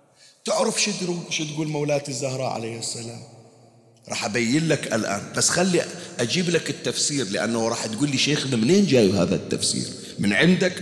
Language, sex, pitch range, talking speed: Arabic, male, 130-185 Hz, 150 wpm